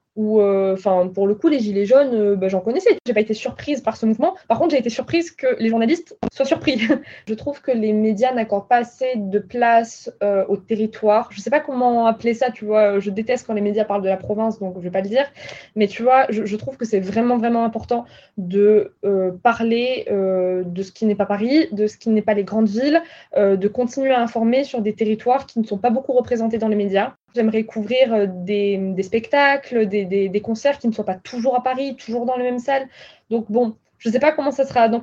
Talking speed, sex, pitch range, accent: 245 wpm, female, 210-255 Hz, French